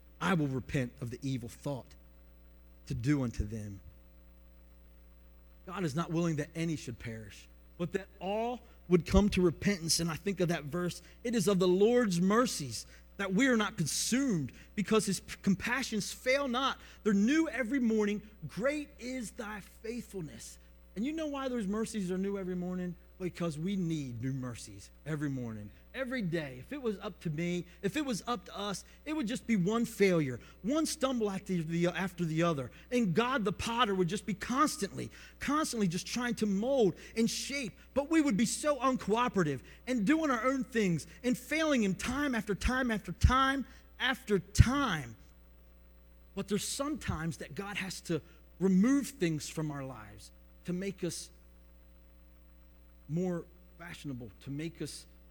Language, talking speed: English, 170 wpm